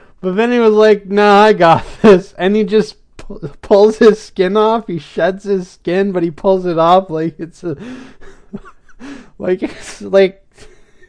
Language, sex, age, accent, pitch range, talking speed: English, male, 20-39, American, 160-200 Hz, 170 wpm